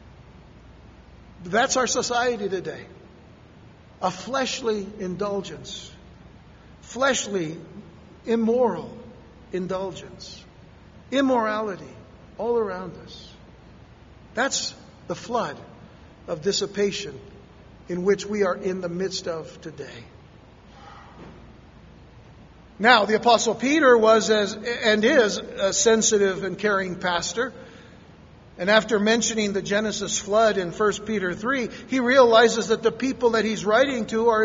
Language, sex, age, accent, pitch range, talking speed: English, male, 60-79, American, 195-235 Hz, 105 wpm